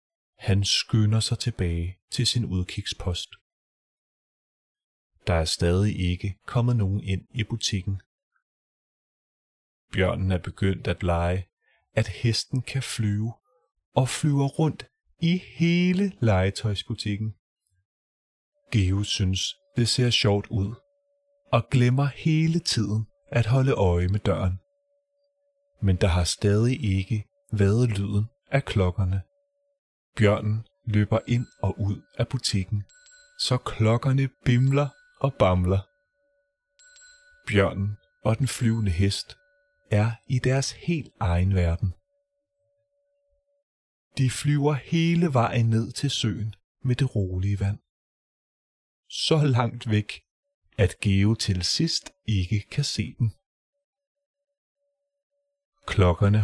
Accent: native